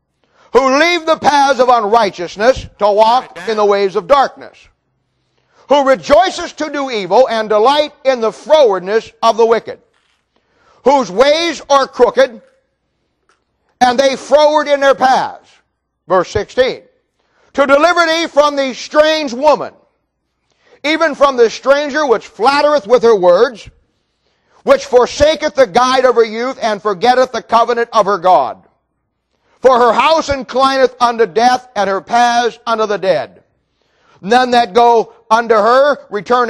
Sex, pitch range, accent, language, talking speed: male, 225-275 Hz, American, English, 140 wpm